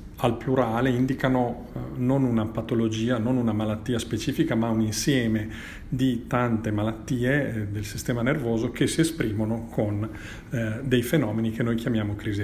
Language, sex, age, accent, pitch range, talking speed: Italian, male, 40-59, native, 110-130 Hz, 140 wpm